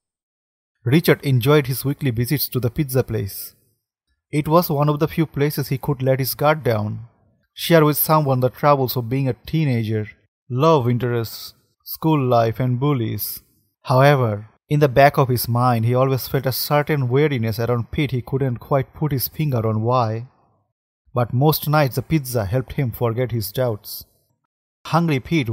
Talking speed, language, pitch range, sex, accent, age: 170 wpm, English, 115-145 Hz, male, Indian, 30-49